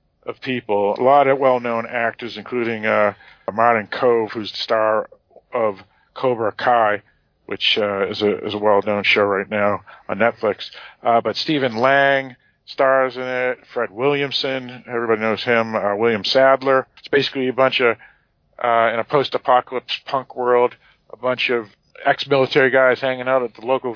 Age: 50-69